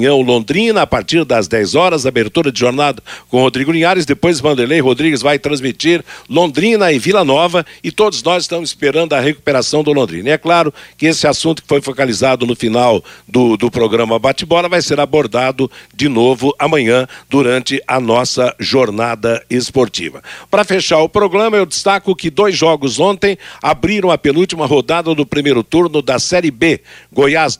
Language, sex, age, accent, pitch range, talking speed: Portuguese, male, 60-79, Brazilian, 125-170 Hz, 165 wpm